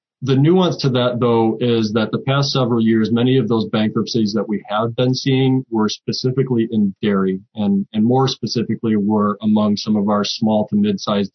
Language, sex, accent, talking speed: English, male, American, 190 wpm